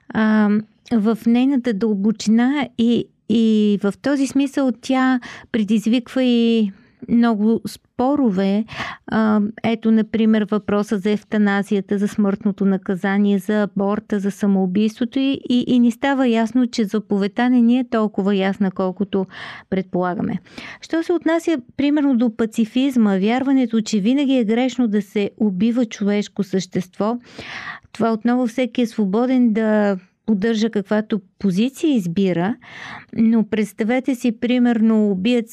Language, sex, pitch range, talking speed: Bulgarian, female, 205-240 Hz, 120 wpm